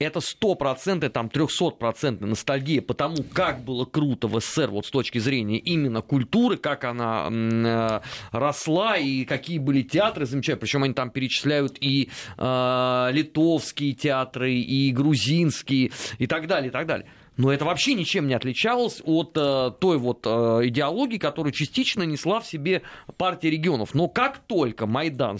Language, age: Russian, 30-49